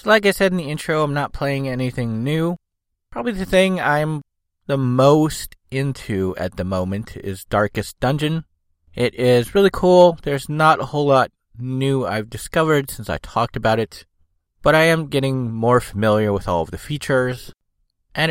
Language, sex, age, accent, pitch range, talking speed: English, male, 30-49, American, 95-135 Hz, 175 wpm